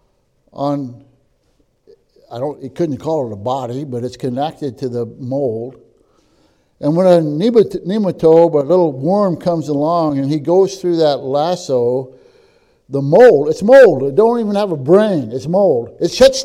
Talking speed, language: 160 wpm, English